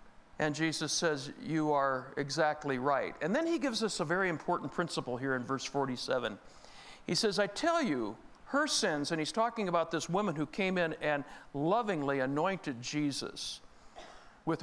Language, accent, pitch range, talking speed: English, American, 145-180 Hz, 170 wpm